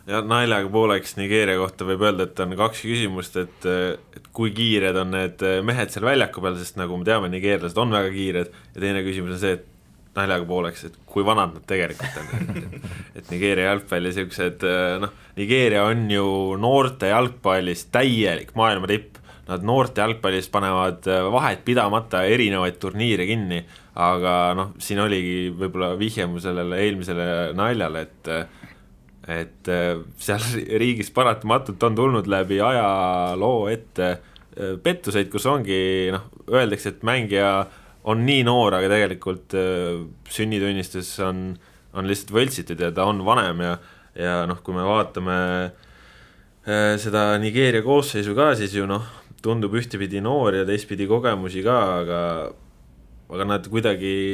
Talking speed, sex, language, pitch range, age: 140 wpm, male, English, 90-110 Hz, 20-39